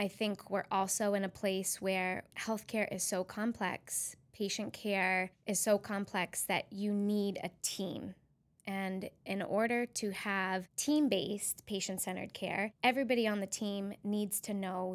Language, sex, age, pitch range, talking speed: English, female, 10-29, 190-215 Hz, 150 wpm